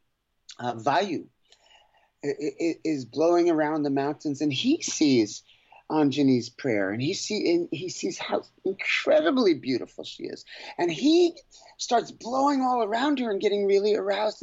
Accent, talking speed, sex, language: American, 140 wpm, male, English